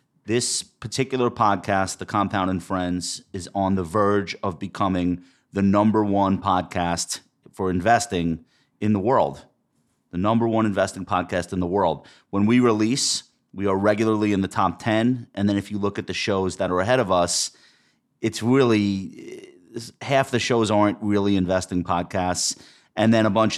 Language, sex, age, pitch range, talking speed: English, male, 30-49, 90-110 Hz, 170 wpm